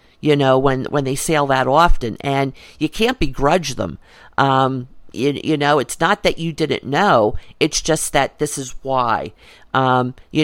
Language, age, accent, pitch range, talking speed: English, 50-69, American, 130-160 Hz, 180 wpm